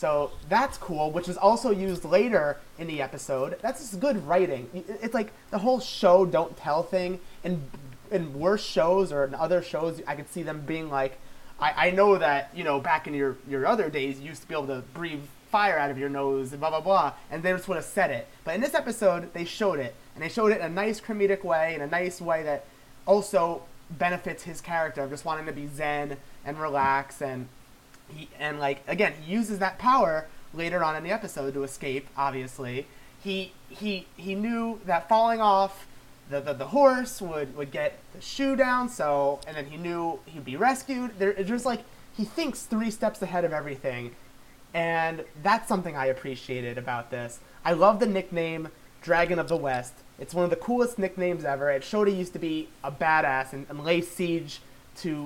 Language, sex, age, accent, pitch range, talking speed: English, male, 30-49, American, 140-190 Hz, 210 wpm